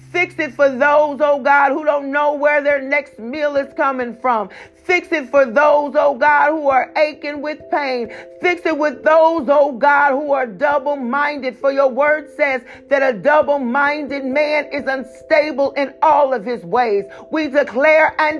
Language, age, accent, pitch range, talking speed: English, 40-59, American, 265-305 Hz, 175 wpm